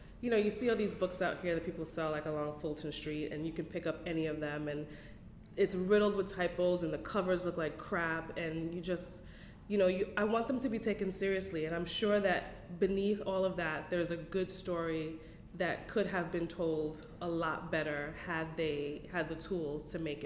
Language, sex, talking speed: English, female, 220 wpm